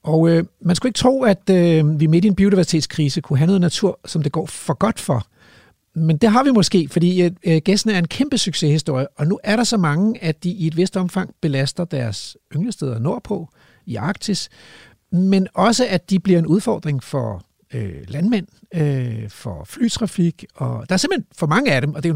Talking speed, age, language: 210 wpm, 60-79, Danish